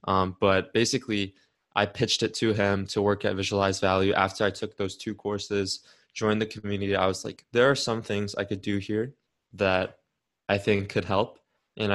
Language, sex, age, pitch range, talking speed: English, male, 20-39, 95-105 Hz, 195 wpm